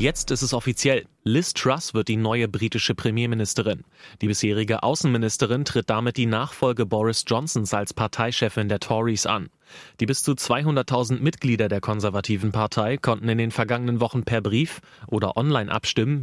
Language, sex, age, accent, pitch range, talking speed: German, male, 30-49, German, 110-130 Hz, 160 wpm